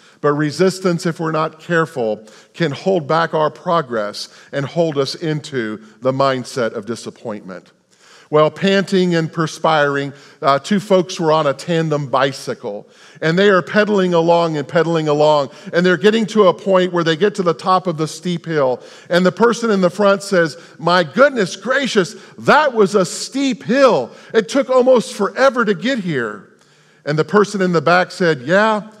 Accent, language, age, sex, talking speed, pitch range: American, English, 50-69, male, 175 wpm, 150-200 Hz